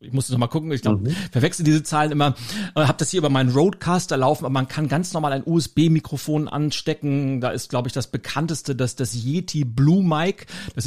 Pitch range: 135-160 Hz